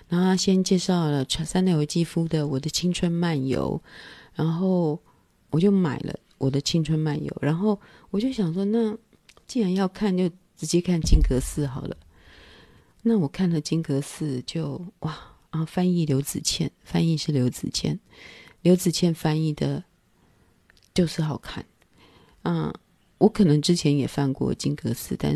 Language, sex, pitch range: Chinese, female, 145-180 Hz